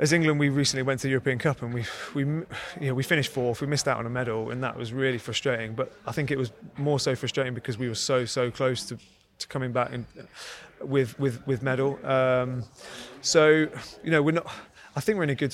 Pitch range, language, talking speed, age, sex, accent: 120-140 Hz, English, 245 wpm, 30-49, male, British